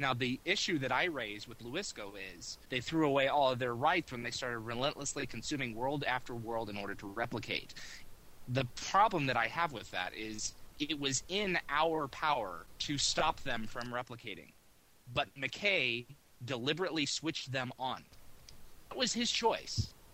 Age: 30-49